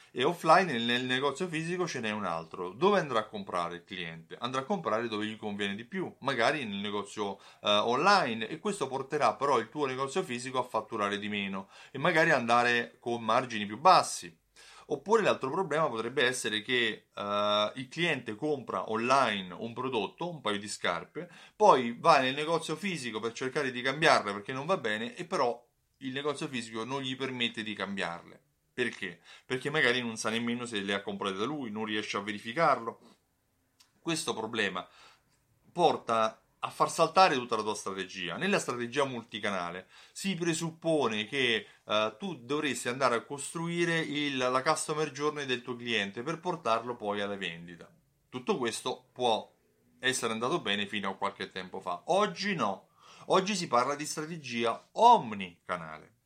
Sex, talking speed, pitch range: male, 165 wpm, 105-150 Hz